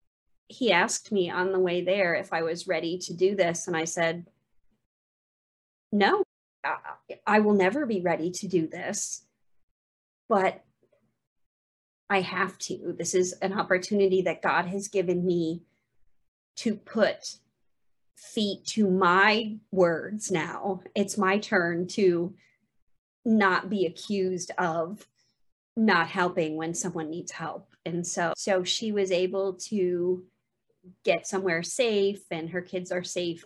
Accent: American